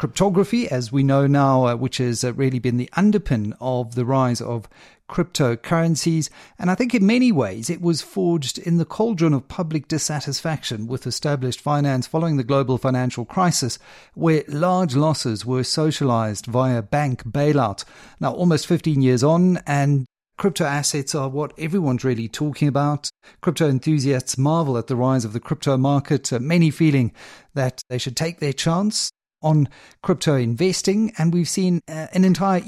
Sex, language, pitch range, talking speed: male, English, 130-165 Hz, 160 wpm